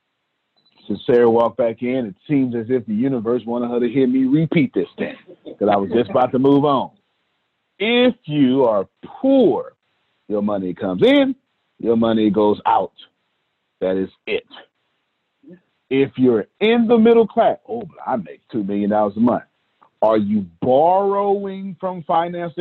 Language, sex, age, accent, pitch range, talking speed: English, male, 40-59, American, 105-170 Hz, 160 wpm